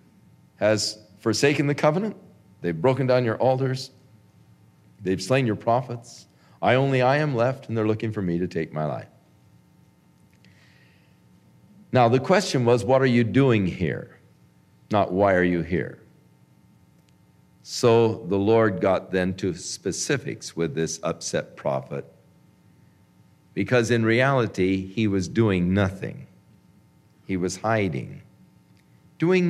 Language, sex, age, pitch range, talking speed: English, male, 50-69, 105-145 Hz, 130 wpm